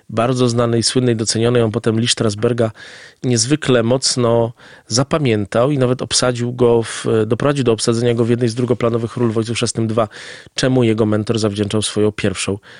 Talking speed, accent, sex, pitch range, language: 150 wpm, native, male, 115-135 Hz, Polish